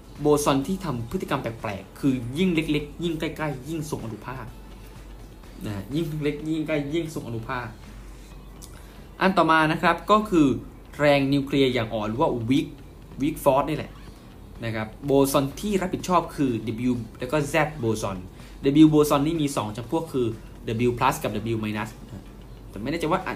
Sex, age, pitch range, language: male, 20-39, 115-155 Hz, Thai